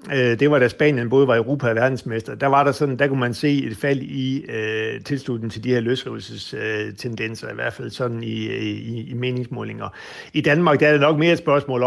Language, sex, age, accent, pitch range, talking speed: Danish, male, 60-79, native, 110-140 Hz, 220 wpm